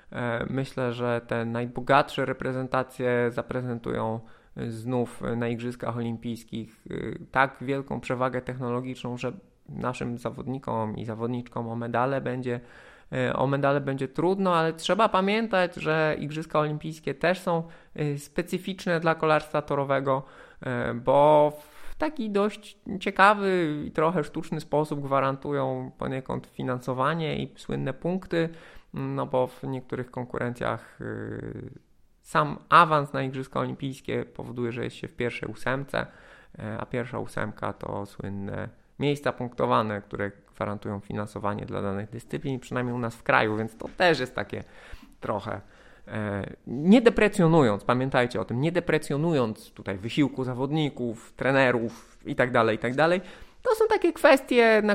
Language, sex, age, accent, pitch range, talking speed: Polish, male, 20-39, native, 115-155 Hz, 120 wpm